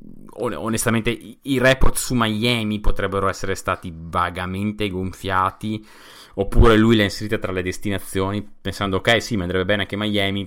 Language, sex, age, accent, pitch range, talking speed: Italian, male, 30-49, native, 85-110 Hz, 145 wpm